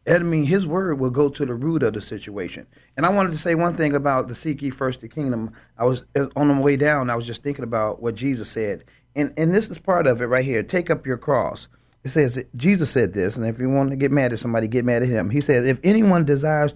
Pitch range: 125-160 Hz